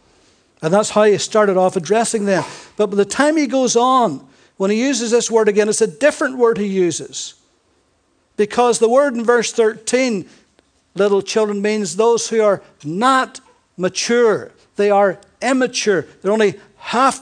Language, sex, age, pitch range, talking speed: English, male, 60-79, 190-245 Hz, 165 wpm